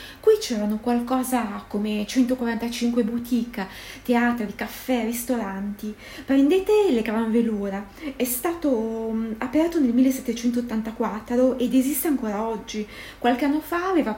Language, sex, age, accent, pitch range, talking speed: Italian, female, 20-39, native, 215-255 Hz, 110 wpm